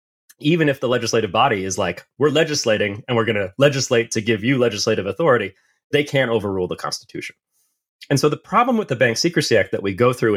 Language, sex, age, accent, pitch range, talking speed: English, male, 30-49, American, 110-155 Hz, 215 wpm